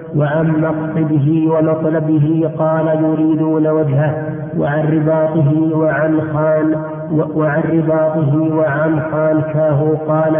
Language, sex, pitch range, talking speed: Arabic, male, 150-155 Hz, 80 wpm